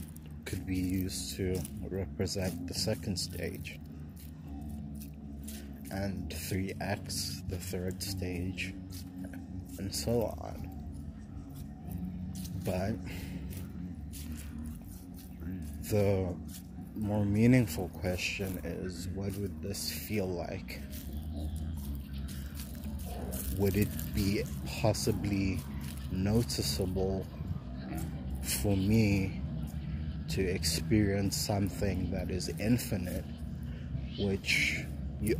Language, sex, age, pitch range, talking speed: English, male, 30-49, 75-95 Hz, 70 wpm